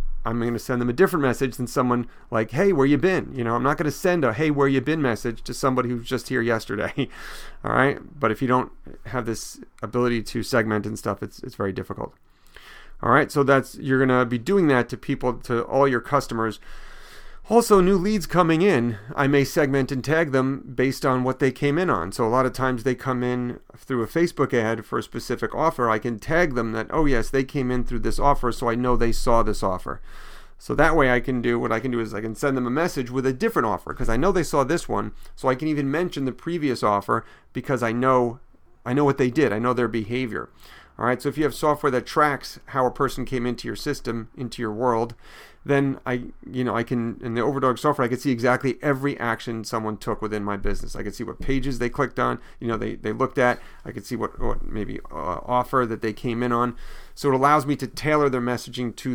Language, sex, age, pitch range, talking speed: English, male, 40-59, 115-135 Hz, 250 wpm